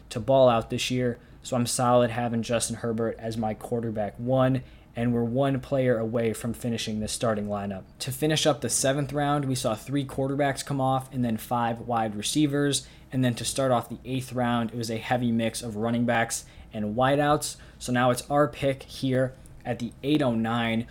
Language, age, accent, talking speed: English, 20-39, American, 200 wpm